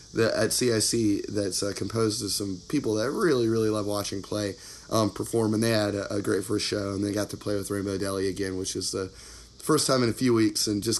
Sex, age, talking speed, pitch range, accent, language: male, 30-49, 245 wpm, 100-120 Hz, American, English